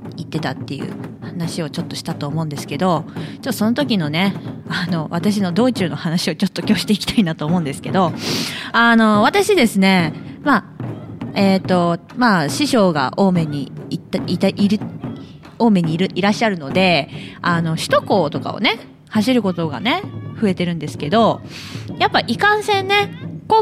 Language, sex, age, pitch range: Japanese, female, 20-39, 160-240 Hz